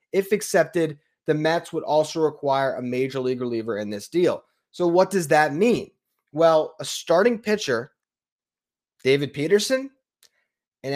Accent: American